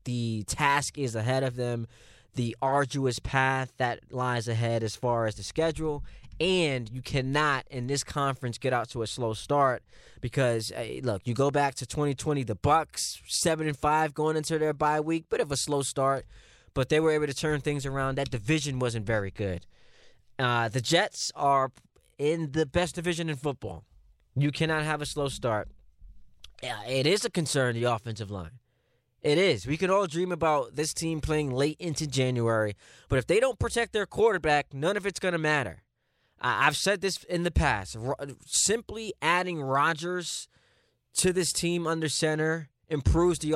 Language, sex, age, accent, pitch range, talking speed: English, male, 20-39, American, 125-155 Hz, 180 wpm